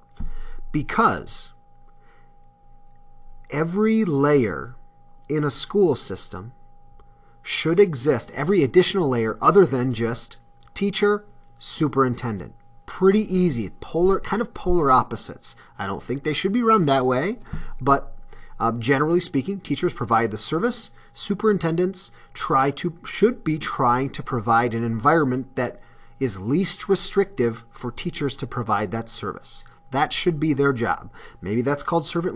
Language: English